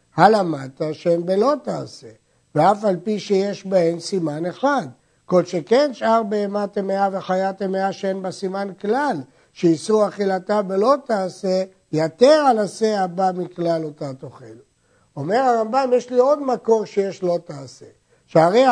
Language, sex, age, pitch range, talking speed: Hebrew, male, 60-79, 170-210 Hz, 135 wpm